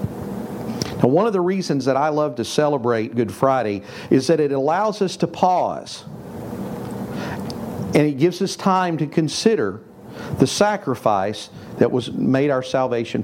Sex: male